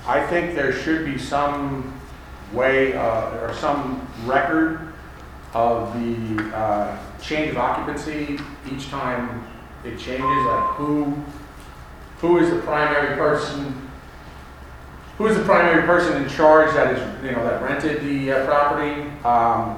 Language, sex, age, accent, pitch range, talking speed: English, male, 40-59, American, 110-140 Hz, 135 wpm